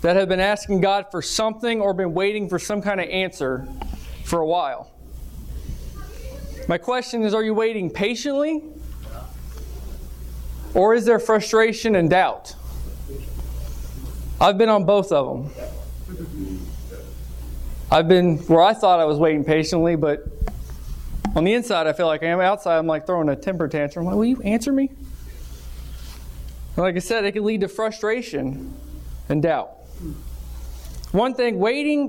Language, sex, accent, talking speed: English, male, American, 155 wpm